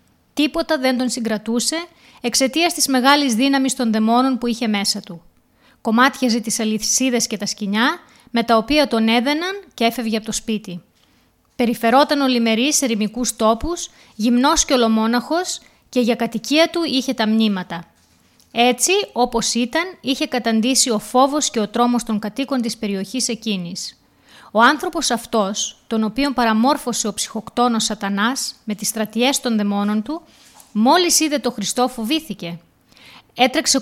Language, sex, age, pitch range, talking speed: Greek, female, 20-39, 220-275 Hz, 145 wpm